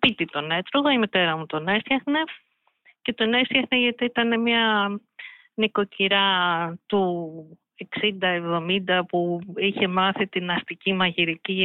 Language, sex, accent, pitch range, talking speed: Greek, female, native, 175-225 Hz, 120 wpm